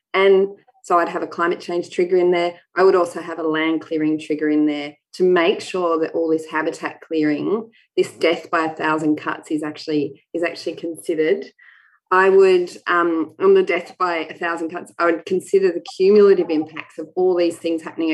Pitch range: 160-185 Hz